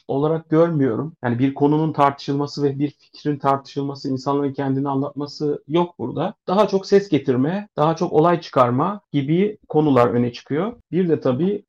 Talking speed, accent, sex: 155 wpm, native, male